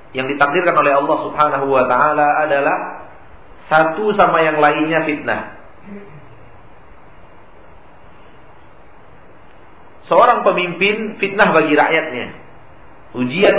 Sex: male